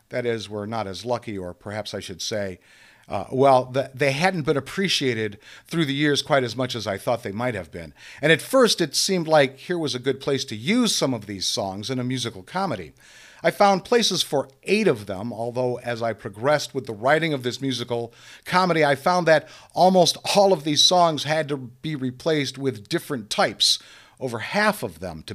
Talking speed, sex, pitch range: 215 wpm, male, 120-155 Hz